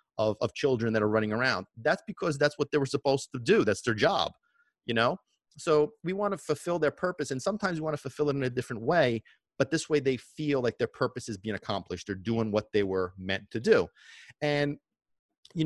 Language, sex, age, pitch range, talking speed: English, male, 30-49, 110-145 Hz, 230 wpm